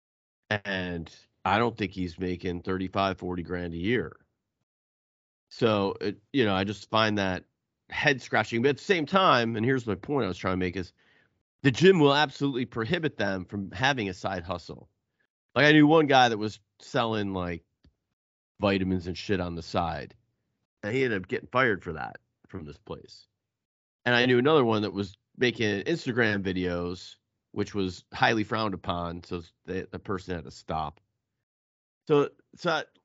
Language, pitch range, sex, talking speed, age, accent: English, 95-125 Hz, male, 175 wpm, 30-49, American